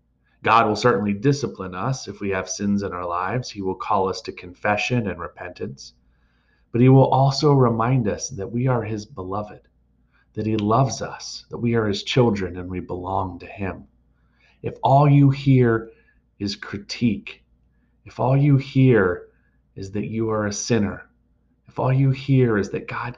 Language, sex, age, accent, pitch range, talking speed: English, male, 30-49, American, 90-125 Hz, 175 wpm